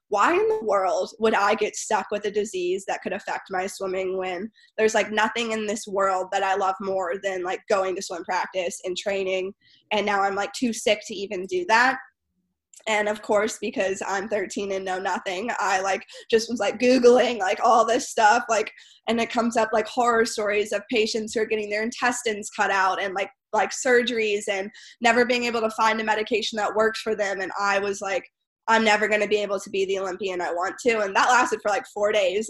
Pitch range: 195-225 Hz